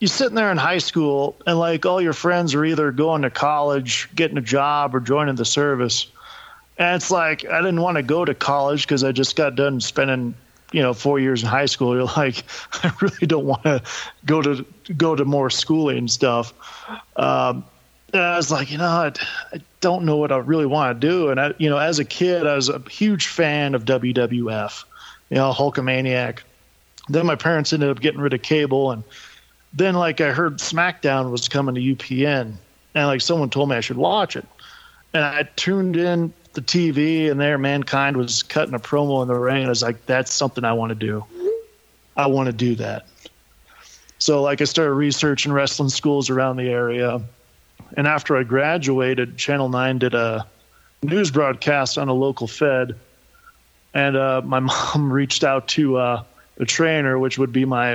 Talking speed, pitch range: 200 wpm, 125-155 Hz